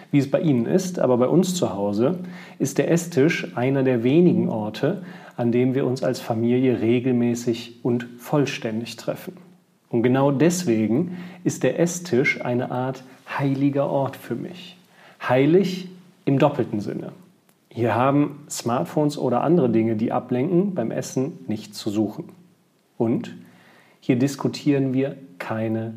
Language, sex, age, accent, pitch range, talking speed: German, male, 40-59, German, 120-175 Hz, 140 wpm